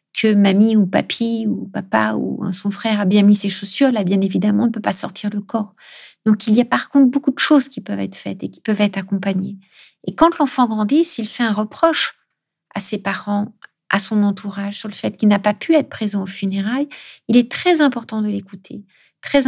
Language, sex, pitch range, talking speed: French, female, 205-250 Hz, 225 wpm